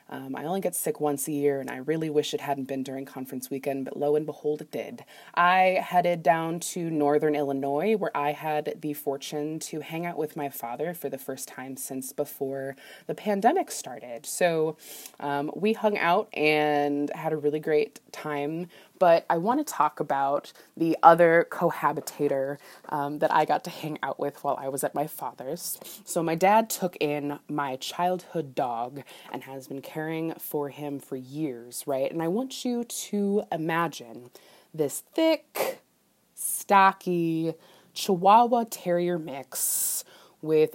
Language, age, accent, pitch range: English, 20-39, American, 145-200 Hz